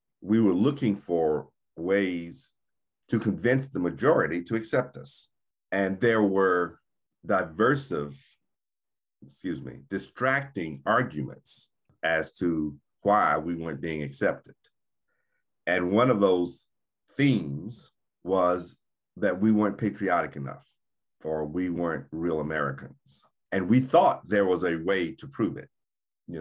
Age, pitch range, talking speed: 50-69, 85-110 Hz, 125 wpm